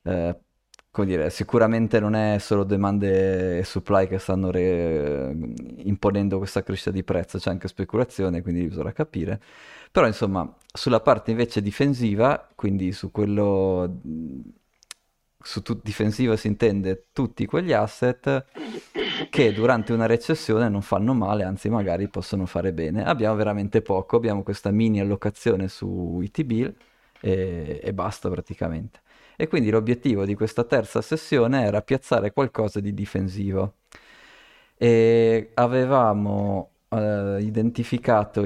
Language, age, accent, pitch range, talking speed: Italian, 20-39, native, 95-115 Hz, 130 wpm